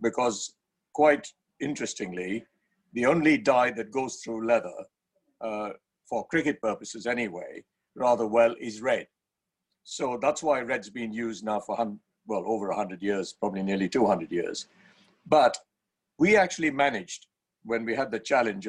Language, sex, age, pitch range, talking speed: English, male, 60-79, 115-150 Hz, 140 wpm